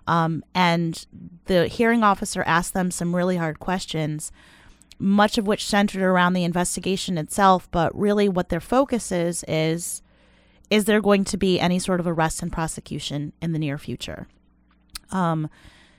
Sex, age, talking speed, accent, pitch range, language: female, 30-49, 160 wpm, American, 165-200 Hz, English